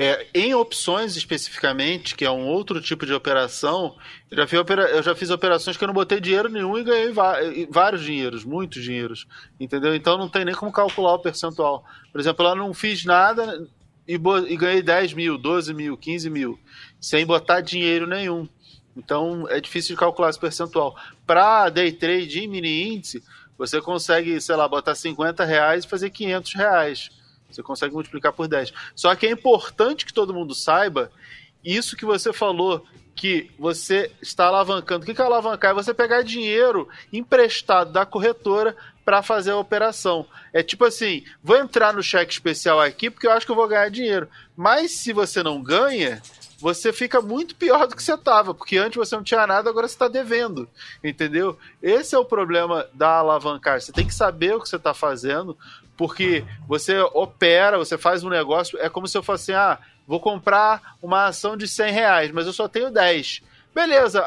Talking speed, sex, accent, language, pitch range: 185 wpm, male, Brazilian, Portuguese, 160-215 Hz